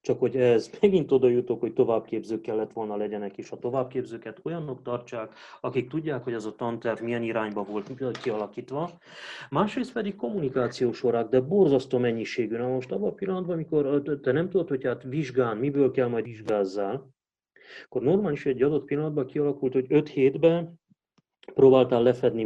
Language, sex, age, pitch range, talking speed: Hungarian, male, 30-49, 110-145 Hz, 165 wpm